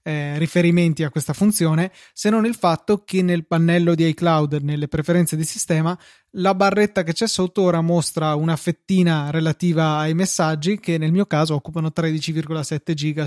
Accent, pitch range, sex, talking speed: native, 150-170 Hz, male, 165 wpm